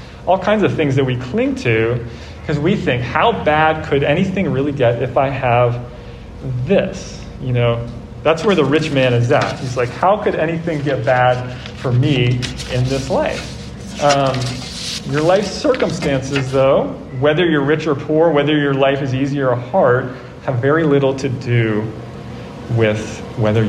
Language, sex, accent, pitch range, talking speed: English, male, American, 120-145 Hz, 165 wpm